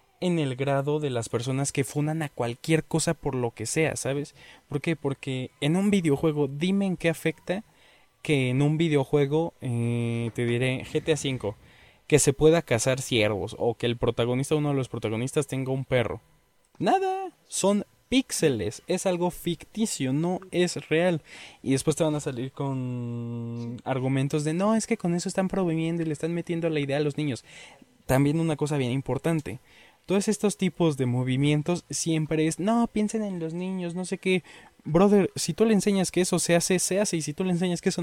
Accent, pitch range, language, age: Mexican, 130-170 Hz, Spanish, 20-39